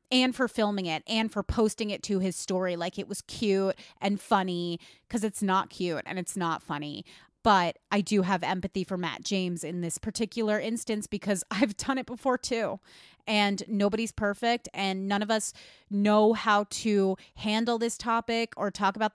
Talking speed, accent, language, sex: 185 wpm, American, English, female